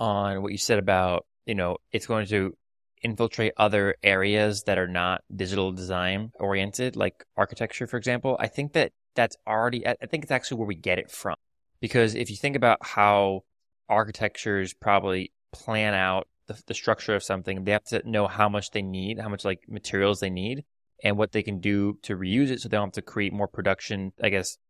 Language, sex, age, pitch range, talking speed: English, male, 20-39, 95-110 Hz, 205 wpm